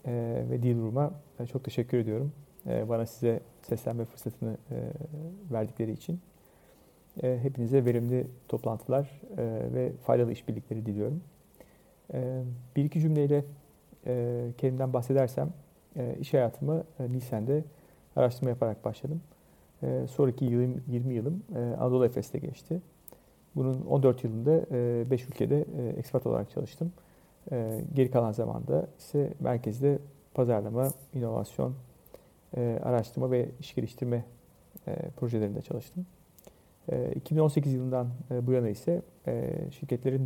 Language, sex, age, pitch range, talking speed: Turkish, male, 40-59, 120-145 Hz, 95 wpm